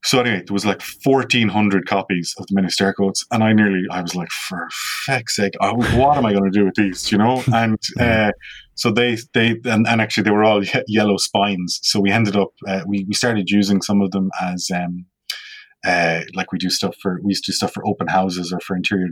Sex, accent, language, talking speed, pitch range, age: male, Irish, English, 240 wpm, 95-115 Hz, 20-39